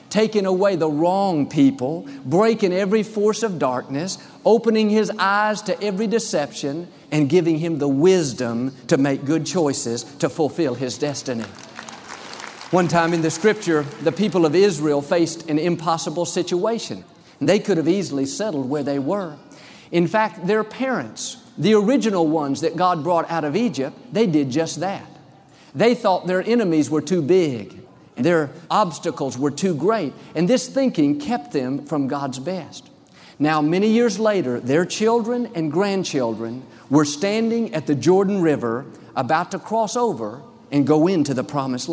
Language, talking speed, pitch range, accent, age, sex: English, 155 wpm, 145-205 Hz, American, 50-69, male